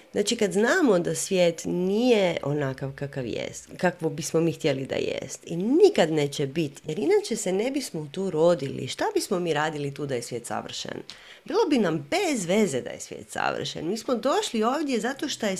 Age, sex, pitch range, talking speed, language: 30-49, female, 160-220 Hz, 195 wpm, Croatian